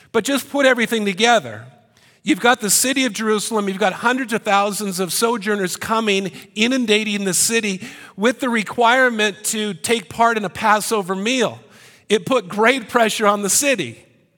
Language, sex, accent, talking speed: English, male, American, 165 wpm